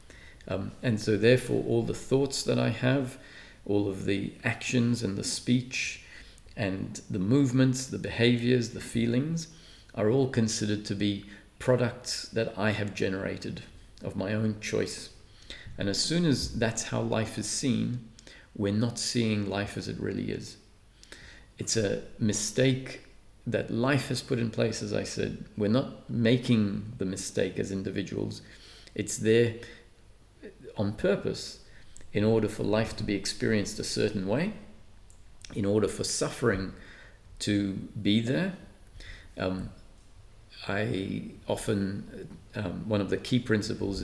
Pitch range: 100-120 Hz